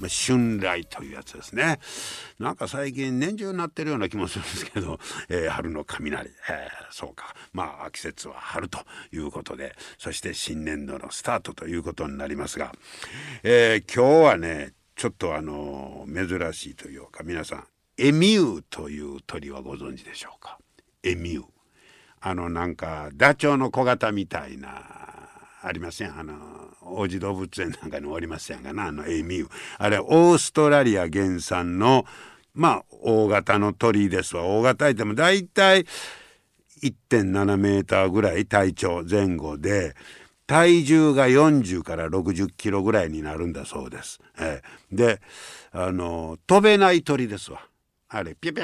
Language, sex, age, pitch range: Japanese, male, 60-79, 85-140 Hz